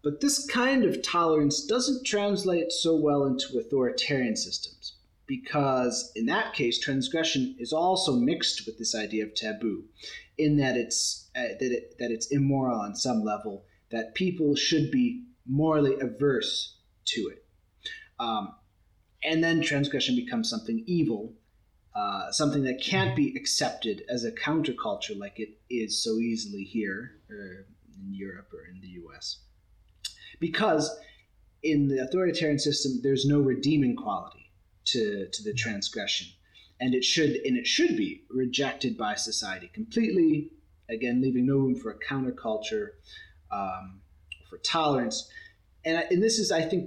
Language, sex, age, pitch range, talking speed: English, male, 30-49, 110-170 Hz, 145 wpm